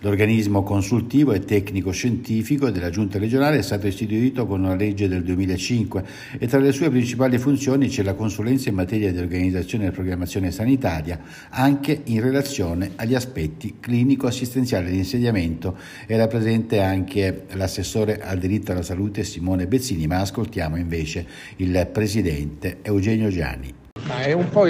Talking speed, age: 145 wpm, 60-79